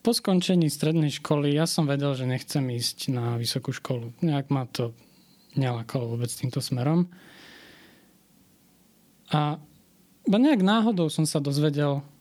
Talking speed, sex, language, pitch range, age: 130 wpm, male, Slovak, 125-160 Hz, 20-39